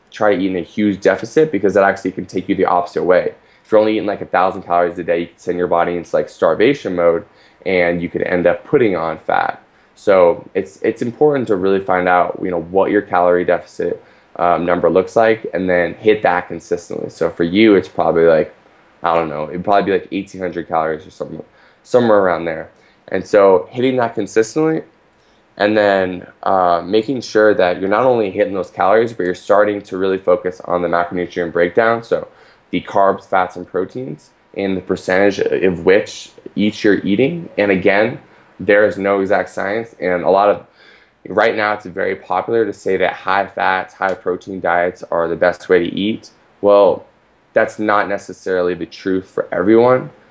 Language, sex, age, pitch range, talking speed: English, male, 10-29, 90-105 Hz, 195 wpm